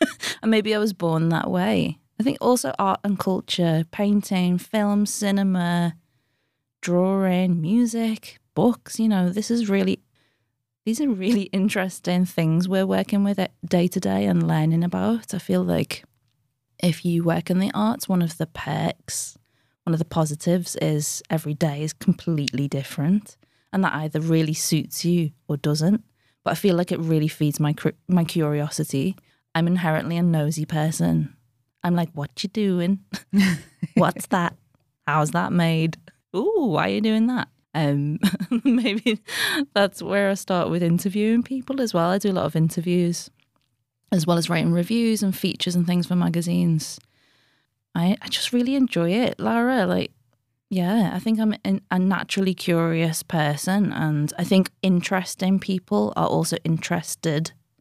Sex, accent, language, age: female, British, Finnish, 20-39